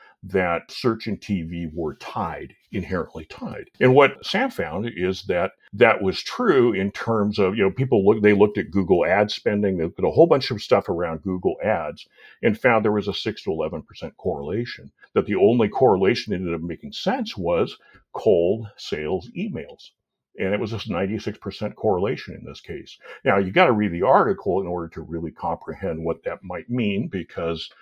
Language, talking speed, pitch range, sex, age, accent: English, 190 wpm, 85-110 Hz, male, 60-79, American